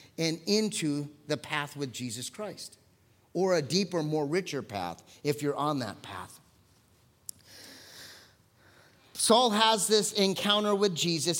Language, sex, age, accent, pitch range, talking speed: English, male, 30-49, American, 145-215 Hz, 125 wpm